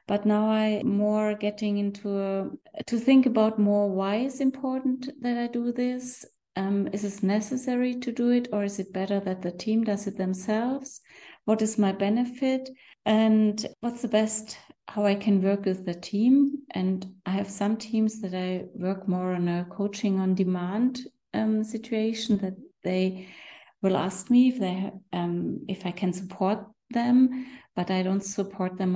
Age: 30-49